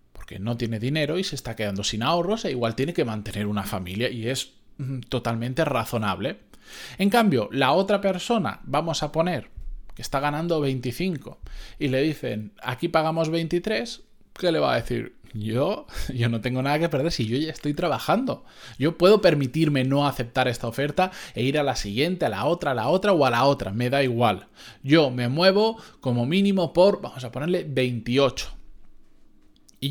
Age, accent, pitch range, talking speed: 20-39, Spanish, 115-165 Hz, 185 wpm